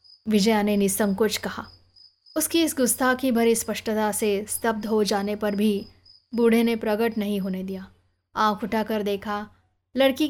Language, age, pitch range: Hindi, 20-39, 195-235 Hz